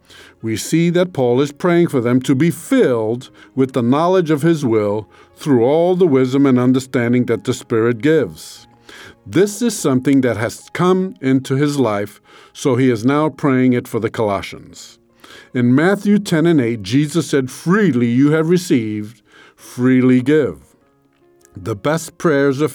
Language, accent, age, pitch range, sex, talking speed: English, American, 50-69, 120-165 Hz, male, 165 wpm